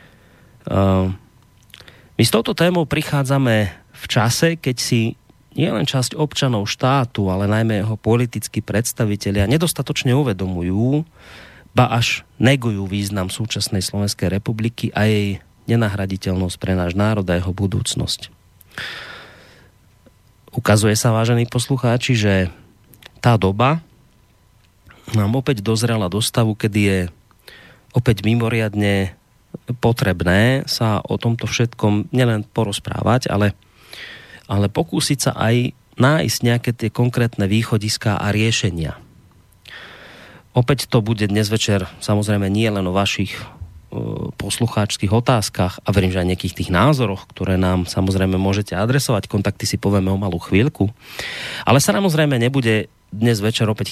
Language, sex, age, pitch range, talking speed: Slovak, male, 30-49, 100-120 Hz, 120 wpm